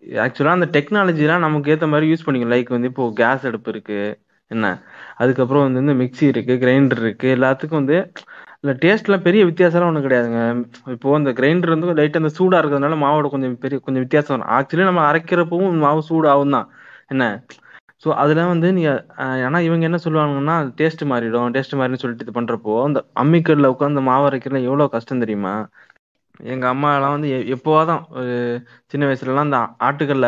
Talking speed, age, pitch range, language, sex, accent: 170 wpm, 20-39, 125-150 Hz, Tamil, male, native